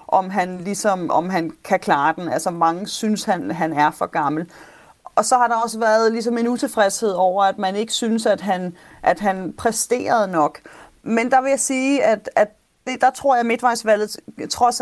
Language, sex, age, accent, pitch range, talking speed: Danish, female, 30-49, native, 195-230 Hz, 200 wpm